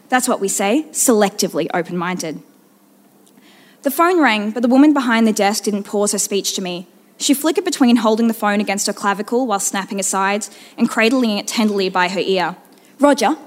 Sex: female